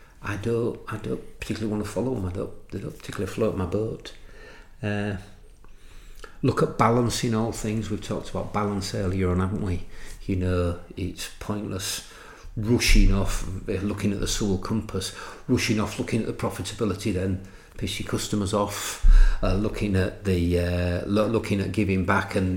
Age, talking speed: 50-69, 170 wpm